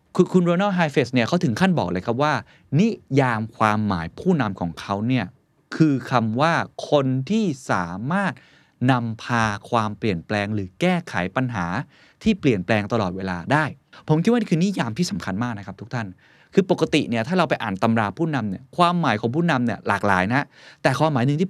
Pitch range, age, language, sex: 105-150 Hz, 20-39, Thai, male